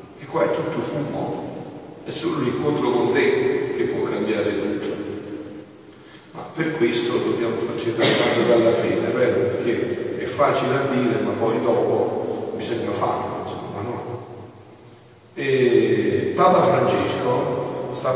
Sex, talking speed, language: male, 130 wpm, Italian